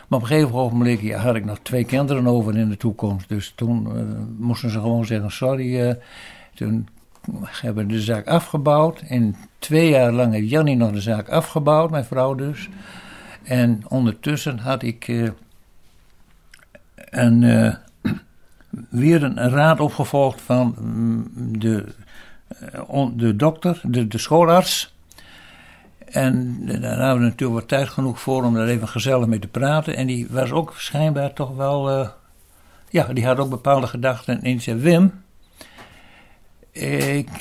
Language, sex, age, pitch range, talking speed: Dutch, male, 60-79, 115-150 Hz, 155 wpm